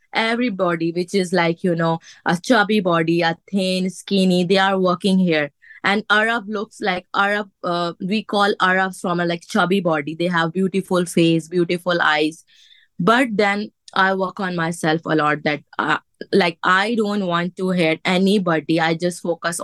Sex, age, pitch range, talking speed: female, 20-39, 170-200 Hz, 170 wpm